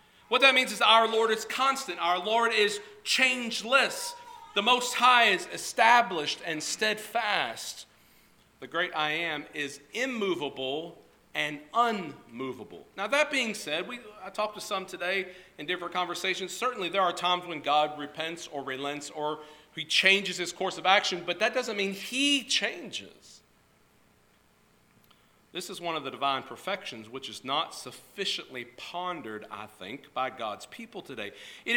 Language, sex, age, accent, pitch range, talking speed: English, male, 40-59, American, 160-235 Hz, 155 wpm